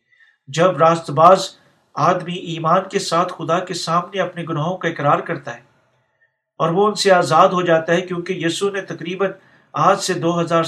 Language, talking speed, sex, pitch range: Urdu, 175 wpm, male, 150-185 Hz